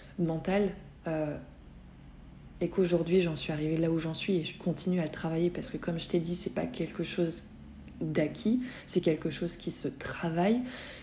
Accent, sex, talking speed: French, female, 185 wpm